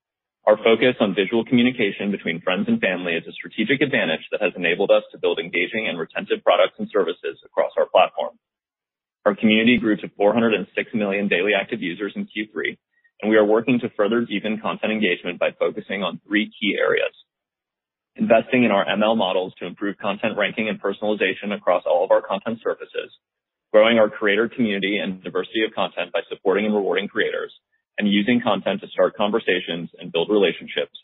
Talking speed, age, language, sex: 180 wpm, 30-49, English, male